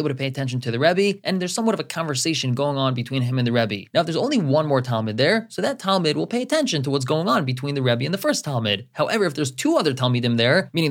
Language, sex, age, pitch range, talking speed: English, male, 20-39, 135-185 Hz, 290 wpm